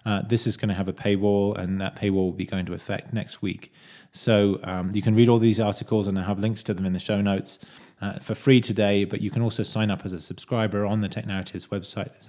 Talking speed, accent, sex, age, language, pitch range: 270 wpm, British, male, 20-39, English, 95-110 Hz